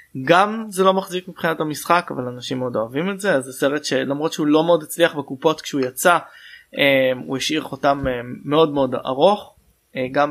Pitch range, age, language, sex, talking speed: 125-160 Hz, 20-39, Hebrew, male, 170 wpm